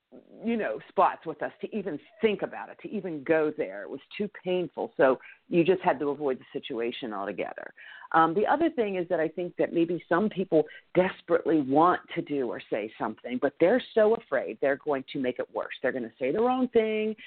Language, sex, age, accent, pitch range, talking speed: English, female, 50-69, American, 160-235 Hz, 220 wpm